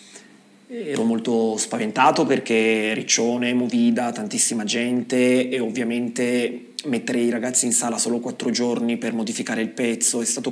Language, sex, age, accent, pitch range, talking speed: Italian, male, 30-49, native, 115-130 Hz, 135 wpm